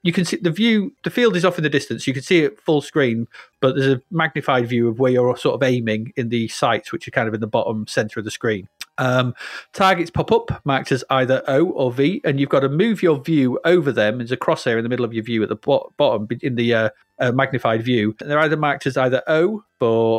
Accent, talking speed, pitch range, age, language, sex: British, 260 wpm, 125-170 Hz, 30-49, English, male